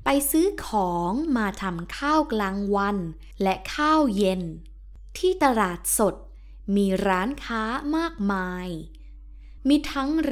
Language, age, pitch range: Thai, 20-39, 180-280 Hz